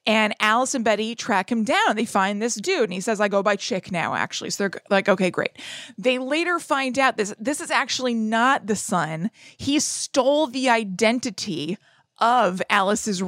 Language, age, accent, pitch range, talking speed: English, 20-39, American, 190-240 Hz, 190 wpm